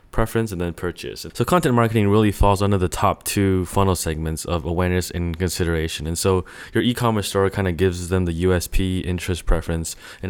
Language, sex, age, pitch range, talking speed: English, male, 20-39, 85-105 Hz, 190 wpm